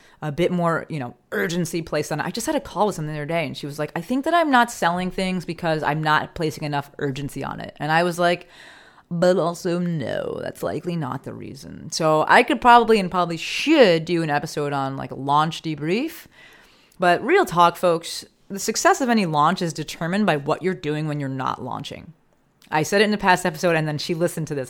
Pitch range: 150-185 Hz